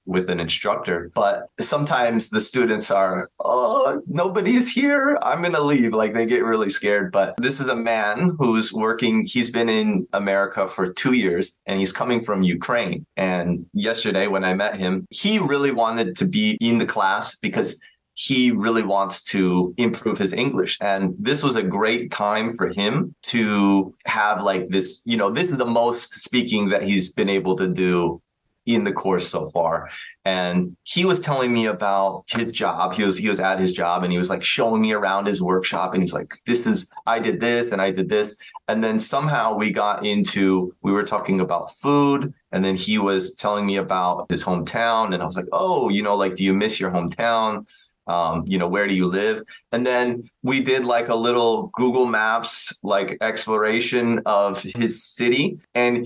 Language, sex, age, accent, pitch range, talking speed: English, male, 20-39, American, 95-125 Hz, 195 wpm